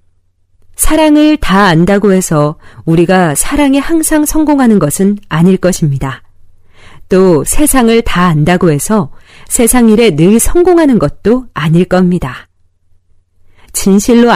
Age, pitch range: 40-59, 135-220 Hz